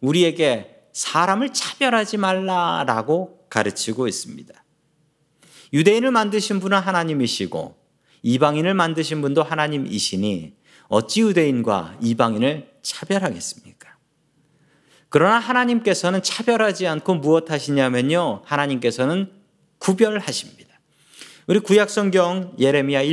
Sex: male